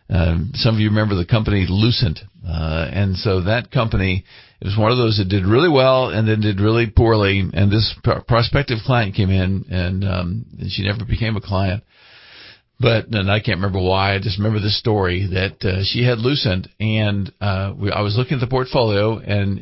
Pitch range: 100-120 Hz